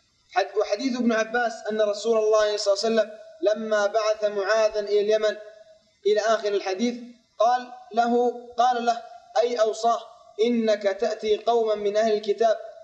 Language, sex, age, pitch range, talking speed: Arabic, male, 20-39, 205-230 Hz, 140 wpm